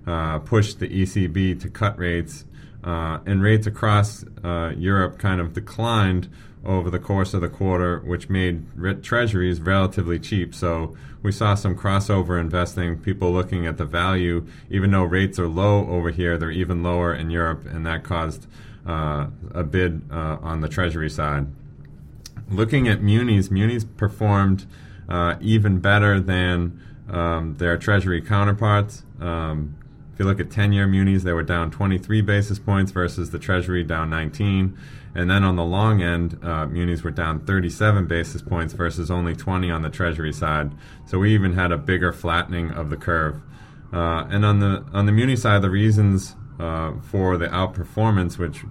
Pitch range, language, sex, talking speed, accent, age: 85-100 Hz, English, male, 170 wpm, American, 30-49